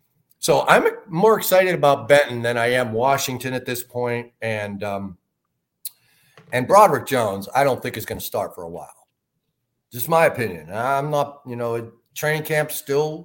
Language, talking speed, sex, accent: English, 175 wpm, male, American